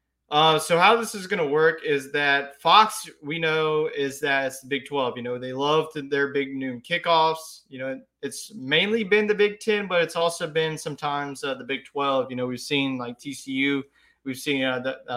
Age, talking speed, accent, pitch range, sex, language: 20-39, 220 wpm, American, 130-160 Hz, male, English